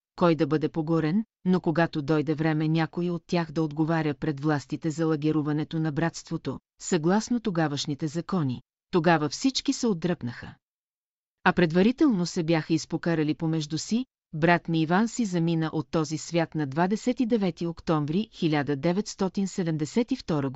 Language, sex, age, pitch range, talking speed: Bulgarian, female, 40-59, 160-195 Hz, 130 wpm